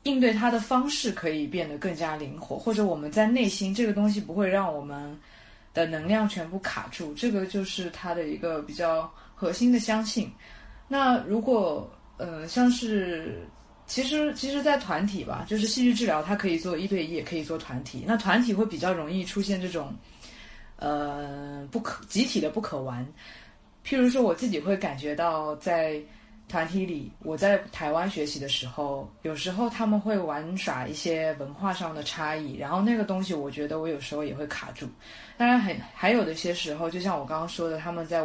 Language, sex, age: Chinese, female, 20-39